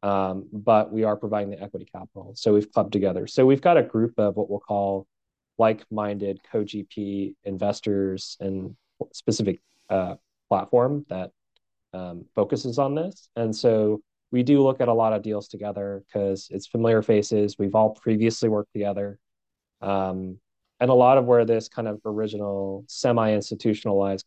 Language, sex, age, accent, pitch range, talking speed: English, male, 30-49, American, 100-115 Hz, 160 wpm